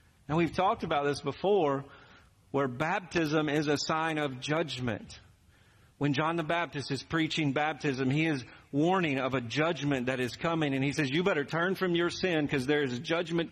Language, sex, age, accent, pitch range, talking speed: English, male, 50-69, American, 130-185 Hz, 190 wpm